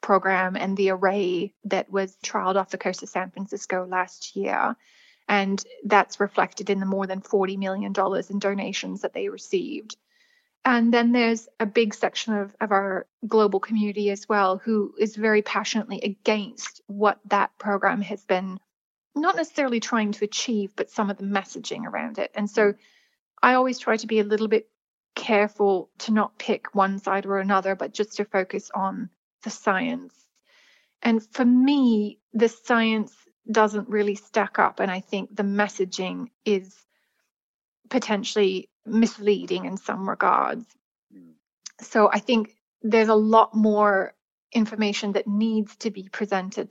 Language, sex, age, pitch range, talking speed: English, female, 30-49, 195-230 Hz, 155 wpm